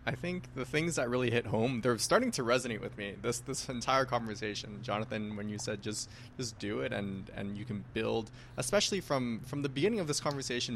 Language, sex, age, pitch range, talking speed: English, male, 20-39, 110-130 Hz, 210 wpm